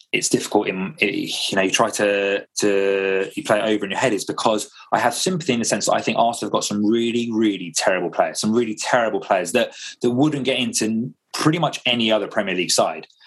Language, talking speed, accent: English, 230 wpm, British